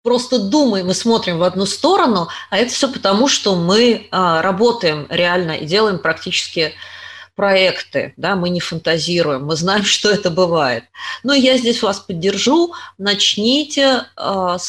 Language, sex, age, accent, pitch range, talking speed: Russian, female, 30-49, native, 170-235 Hz, 145 wpm